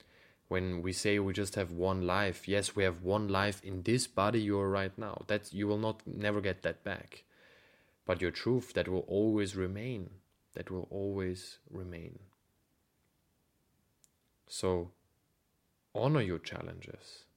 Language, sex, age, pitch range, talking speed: English, male, 30-49, 90-110 Hz, 150 wpm